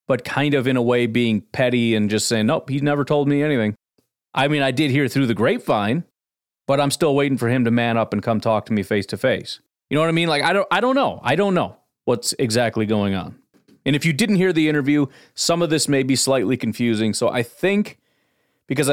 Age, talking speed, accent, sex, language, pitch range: 30-49, 240 wpm, American, male, English, 110-140 Hz